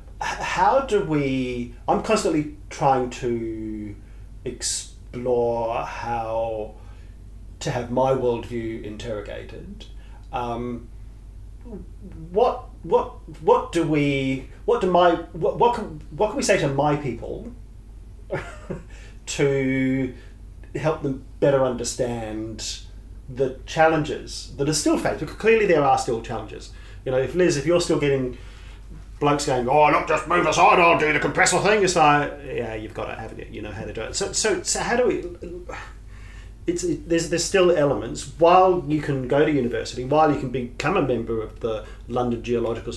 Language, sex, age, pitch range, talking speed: English, male, 40-59, 110-165 Hz, 155 wpm